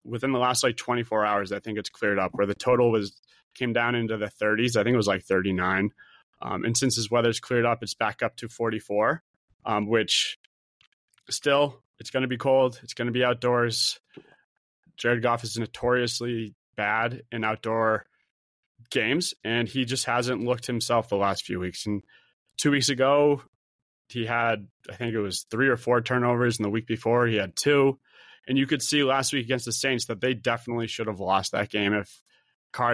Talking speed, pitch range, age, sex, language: 200 wpm, 110-125 Hz, 20-39, male, English